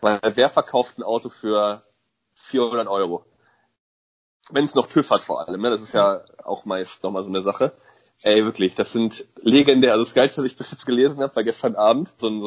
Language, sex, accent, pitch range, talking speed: German, male, German, 115-145 Hz, 215 wpm